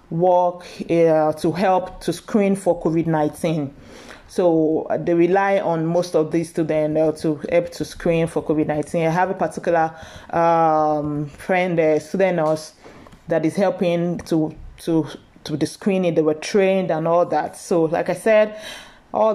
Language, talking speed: English, 170 wpm